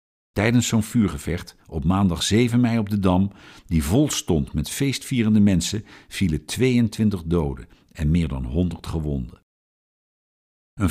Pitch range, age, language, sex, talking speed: 80-110 Hz, 50-69, Dutch, male, 140 wpm